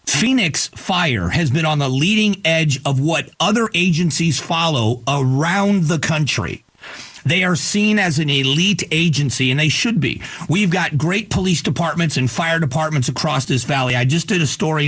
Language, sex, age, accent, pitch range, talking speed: English, male, 40-59, American, 135-170 Hz, 175 wpm